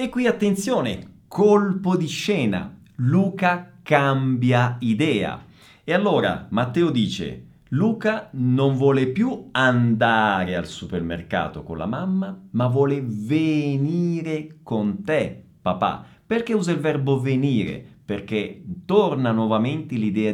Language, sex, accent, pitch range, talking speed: Italian, male, native, 110-155 Hz, 110 wpm